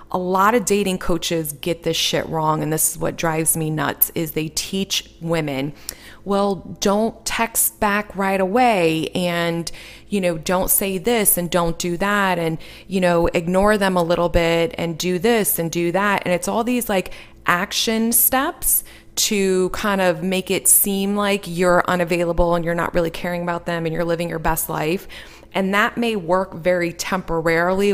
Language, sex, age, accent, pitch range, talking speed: English, female, 20-39, American, 165-195 Hz, 185 wpm